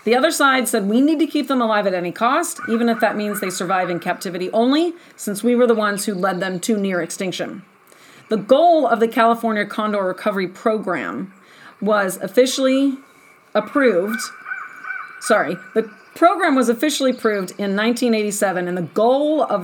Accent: American